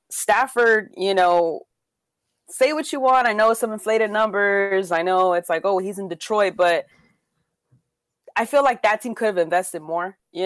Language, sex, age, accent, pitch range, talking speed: English, female, 20-39, American, 170-215 Hz, 180 wpm